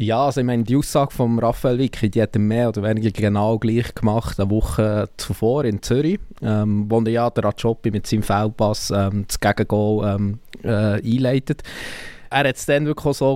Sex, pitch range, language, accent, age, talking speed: male, 105-135 Hz, German, Austrian, 20-39, 200 wpm